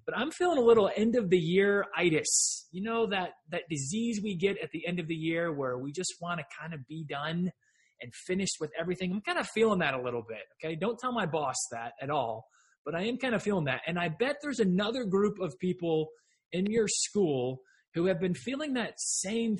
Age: 20-39